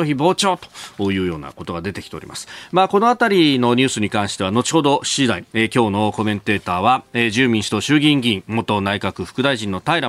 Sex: male